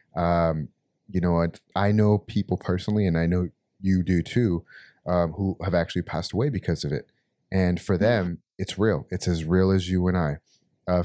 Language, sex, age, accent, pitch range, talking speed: English, male, 30-49, American, 85-100 Hz, 195 wpm